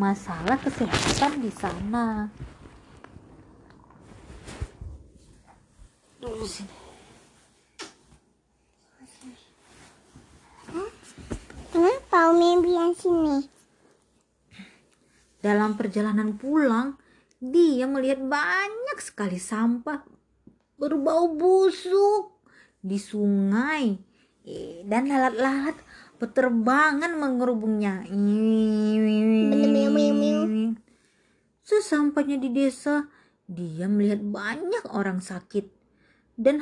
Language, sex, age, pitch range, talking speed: Indonesian, female, 30-49, 205-305 Hz, 50 wpm